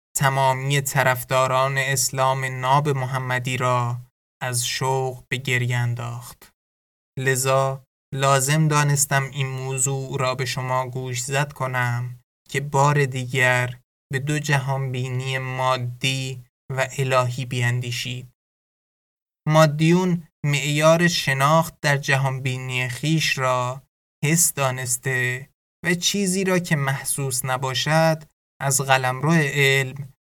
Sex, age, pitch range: male, 20-39, 125-145 Hz